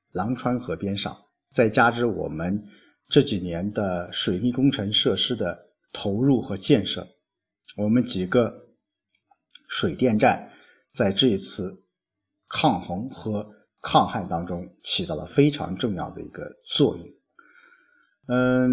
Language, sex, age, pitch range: Chinese, male, 50-69, 100-130 Hz